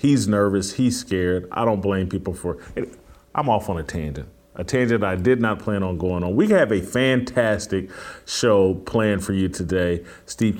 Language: English